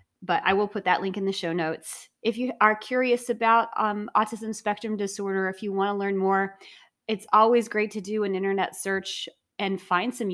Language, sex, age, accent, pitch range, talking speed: English, female, 30-49, American, 175-215 Hz, 210 wpm